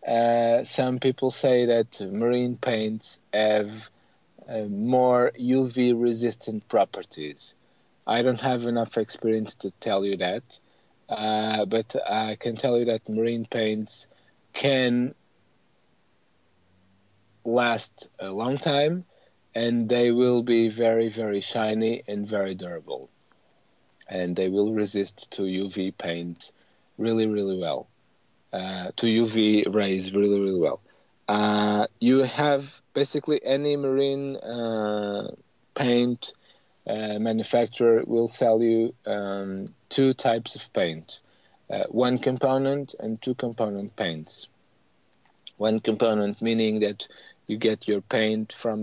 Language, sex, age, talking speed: English, male, 40-59, 120 wpm